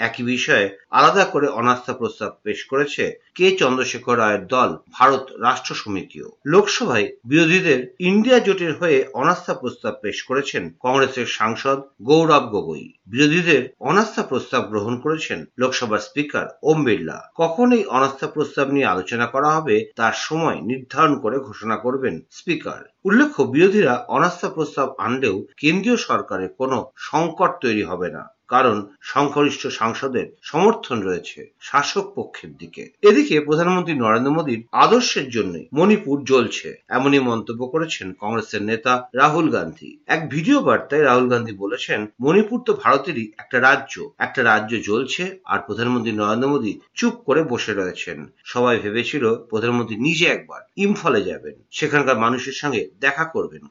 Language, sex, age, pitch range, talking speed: Bengali, male, 50-69, 120-175 Hz, 130 wpm